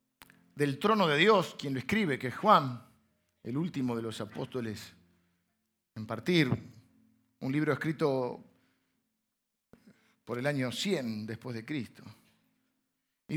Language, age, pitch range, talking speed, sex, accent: Spanish, 50-69, 155-250 Hz, 125 wpm, male, Argentinian